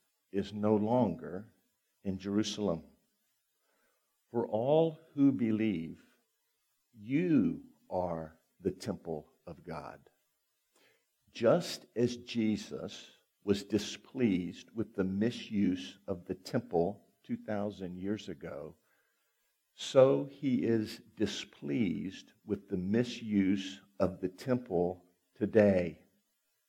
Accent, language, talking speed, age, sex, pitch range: American, English, 90 wpm, 50-69, male, 90-115 Hz